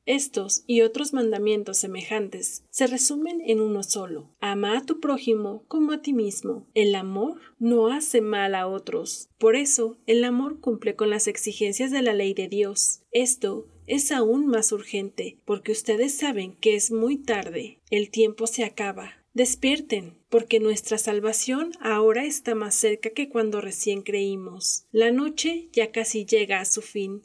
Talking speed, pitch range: 165 wpm, 210-245 Hz